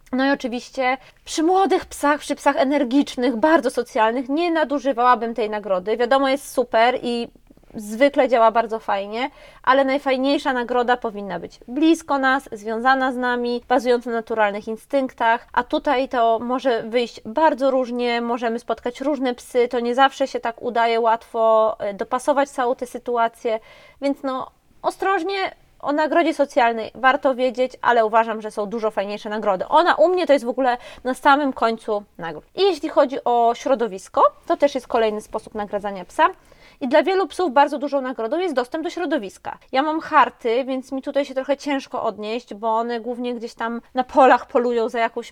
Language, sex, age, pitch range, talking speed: Polish, female, 20-39, 230-280 Hz, 170 wpm